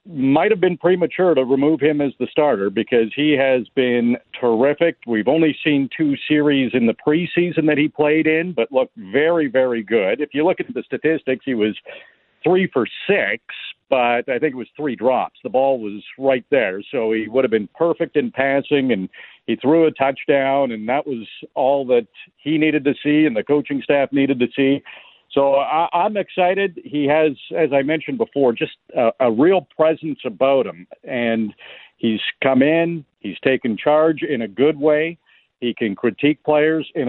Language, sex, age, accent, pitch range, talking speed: English, male, 50-69, American, 120-155 Hz, 190 wpm